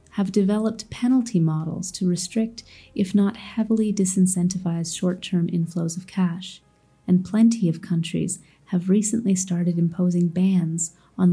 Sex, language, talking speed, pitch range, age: female, English, 125 wpm, 175-195 Hz, 30-49